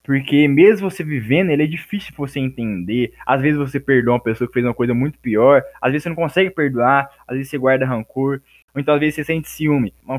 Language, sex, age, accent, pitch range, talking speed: Portuguese, male, 10-29, Brazilian, 120-150 Hz, 235 wpm